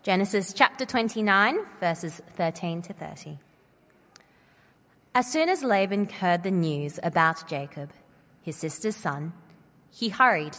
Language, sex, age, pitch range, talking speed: English, female, 20-39, 160-220 Hz, 120 wpm